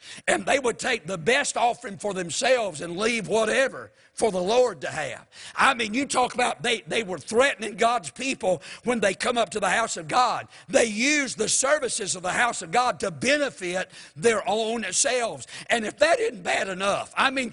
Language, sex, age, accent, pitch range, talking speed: English, male, 60-79, American, 185-250 Hz, 200 wpm